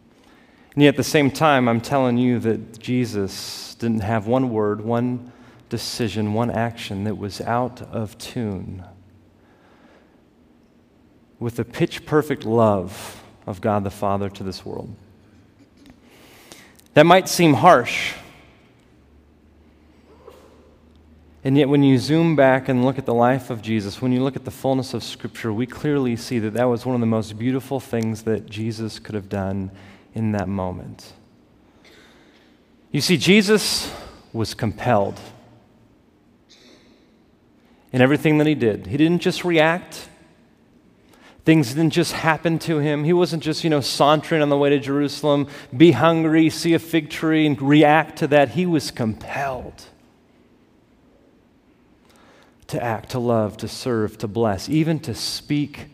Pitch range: 105-145 Hz